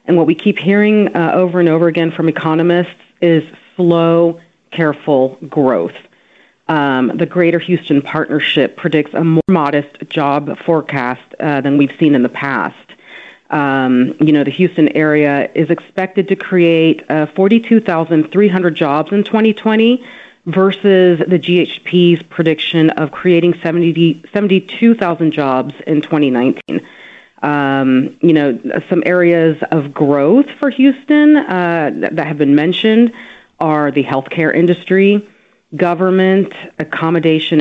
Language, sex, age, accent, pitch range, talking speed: English, female, 40-59, American, 145-185 Hz, 125 wpm